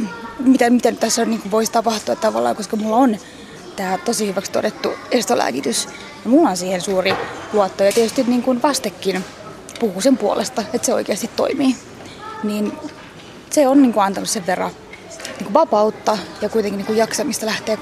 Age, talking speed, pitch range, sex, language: 20-39, 175 wpm, 200-240 Hz, female, Finnish